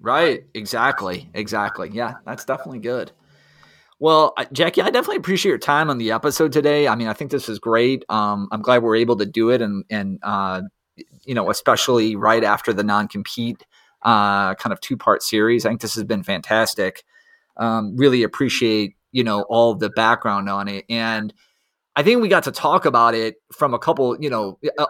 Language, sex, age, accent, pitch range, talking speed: English, male, 30-49, American, 110-140 Hz, 195 wpm